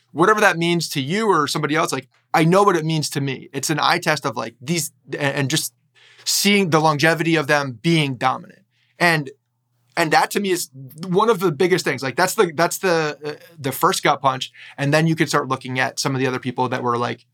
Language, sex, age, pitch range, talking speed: English, male, 20-39, 130-170 Hz, 235 wpm